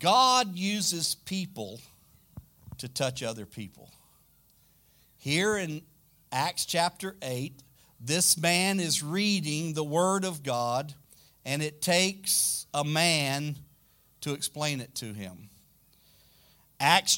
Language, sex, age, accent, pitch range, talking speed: English, male, 50-69, American, 130-180 Hz, 110 wpm